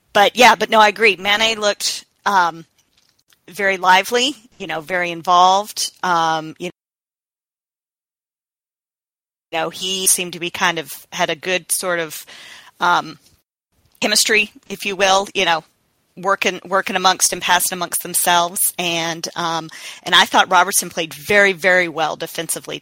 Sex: female